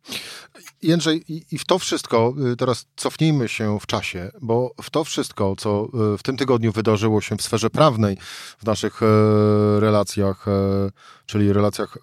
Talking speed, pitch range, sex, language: 140 wpm, 105-125 Hz, male, Polish